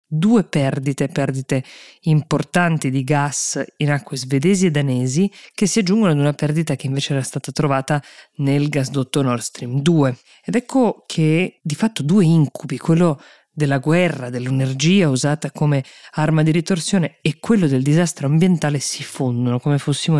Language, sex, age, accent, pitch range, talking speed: Italian, female, 20-39, native, 135-160 Hz, 155 wpm